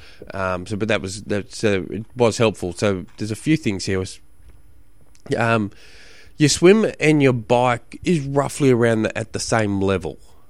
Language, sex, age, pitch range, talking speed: English, male, 20-39, 95-120 Hz, 165 wpm